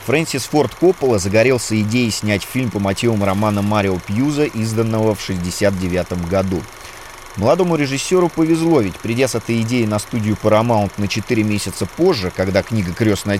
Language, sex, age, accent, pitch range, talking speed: Russian, male, 30-49, native, 105-125 Hz, 150 wpm